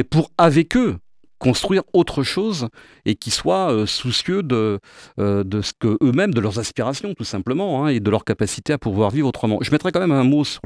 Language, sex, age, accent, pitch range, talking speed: French, male, 40-59, French, 100-140 Hz, 220 wpm